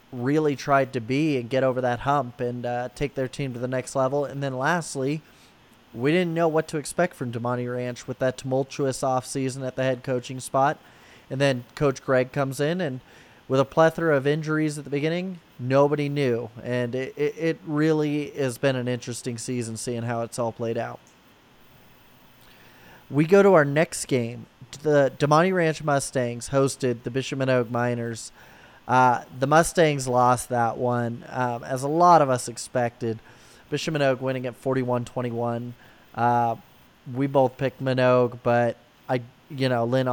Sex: male